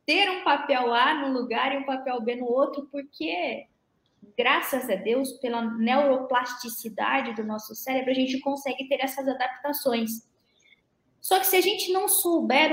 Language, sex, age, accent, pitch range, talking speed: Portuguese, female, 20-39, Brazilian, 260-335 Hz, 160 wpm